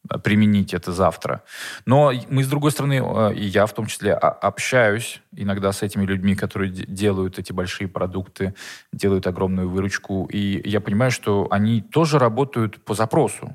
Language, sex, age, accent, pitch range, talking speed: Russian, male, 20-39, native, 100-120 Hz, 155 wpm